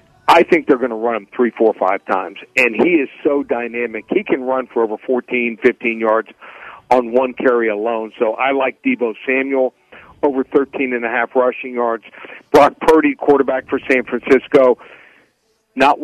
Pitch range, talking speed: 120-140 Hz, 165 wpm